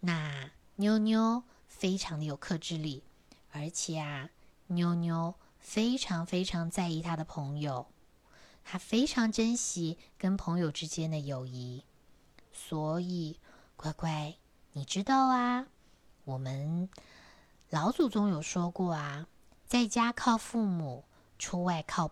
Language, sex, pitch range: Chinese, female, 150-215 Hz